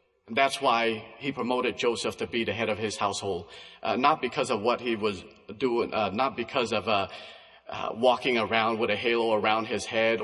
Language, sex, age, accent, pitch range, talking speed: English, male, 40-59, American, 110-130 Hz, 205 wpm